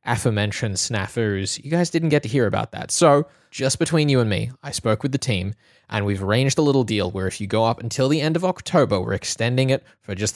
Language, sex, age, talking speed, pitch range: English, male, 10-29, 245 wpm, 100-125 Hz